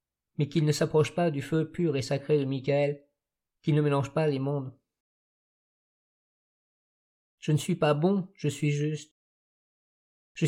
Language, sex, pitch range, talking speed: French, male, 145-165 Hz, 155 wpm